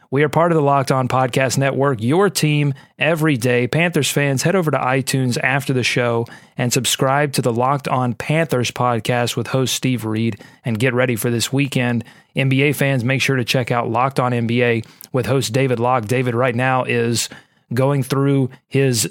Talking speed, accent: 190 wpm, American